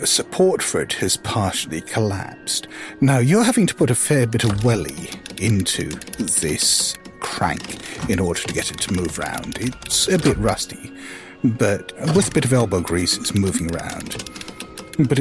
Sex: male